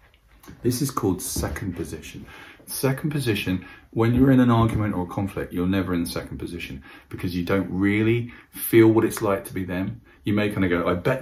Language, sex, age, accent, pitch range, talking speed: English, male, 40-59, British, 90-115 Hz, 210 wpm